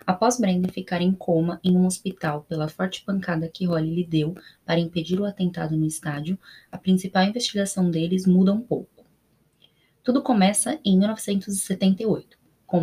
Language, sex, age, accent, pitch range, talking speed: Portuguese, female, 20-39, Brazilian, 175-200 Hz, 150 wpm